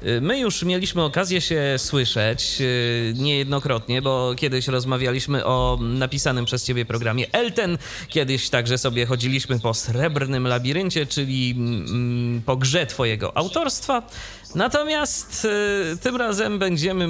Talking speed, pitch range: 110 wpm, 120-175 Hz